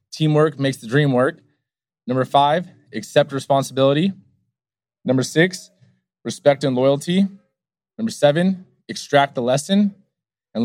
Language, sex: English, male